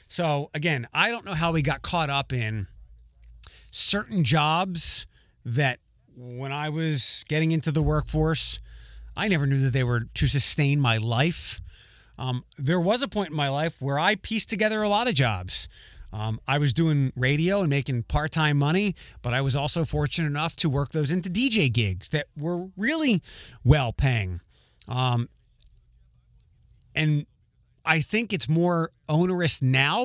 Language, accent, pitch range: English, American, 125-165 Hz